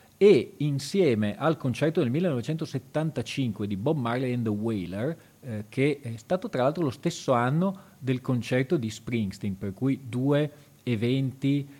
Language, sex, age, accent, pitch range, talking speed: Italian, male, 40-59, native, 110-140 Hz, 145 wpm